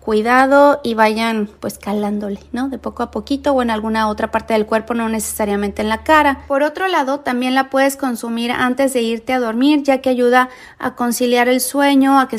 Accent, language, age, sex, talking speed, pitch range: Mexican, Spanish, 30-49, female, 210 wpm, 225-270 Hz